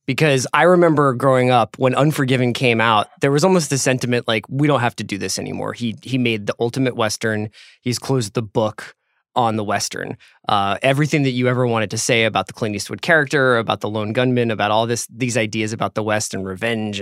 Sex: male